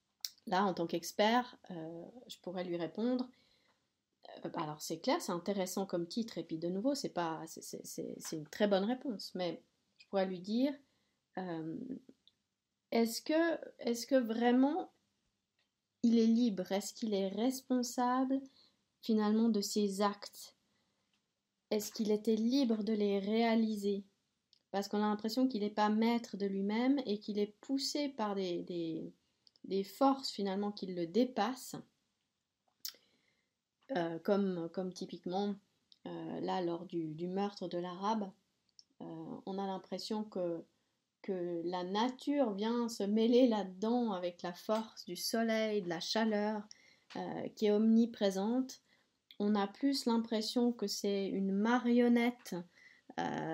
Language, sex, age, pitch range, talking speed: French, female, 40-59, 190-235 Hz, 135 wpm